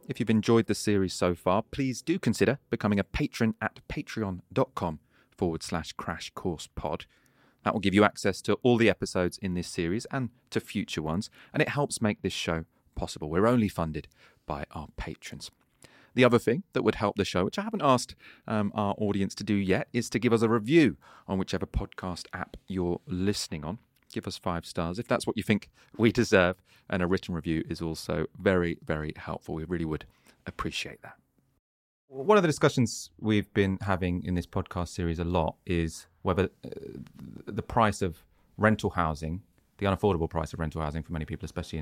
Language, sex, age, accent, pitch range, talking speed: English, male, 30-49, British, 80-110 Hz, 195 wpm